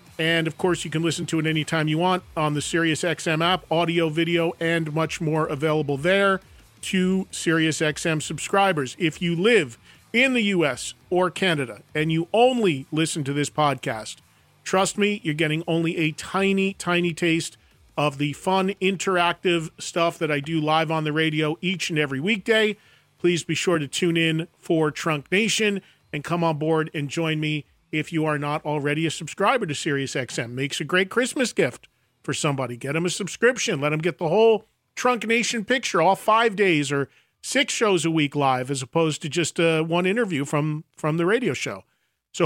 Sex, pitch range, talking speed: male, 155-190 Hz, 190 wpm